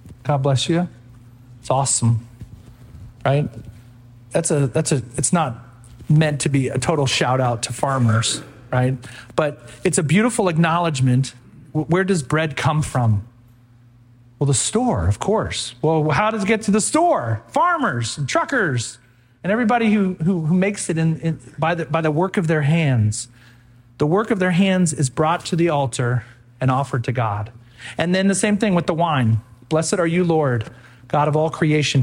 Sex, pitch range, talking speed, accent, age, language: male, 120-160 Hz, 180 wpm, American, 40-59, English